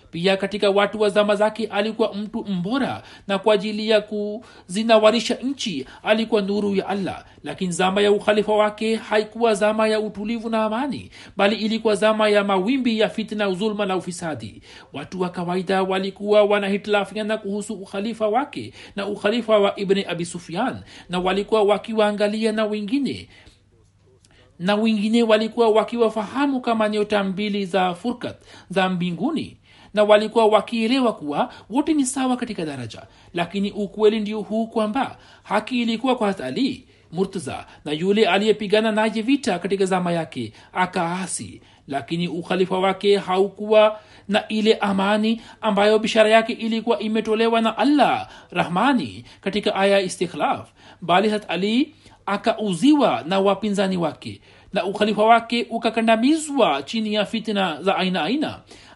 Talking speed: 135 wpm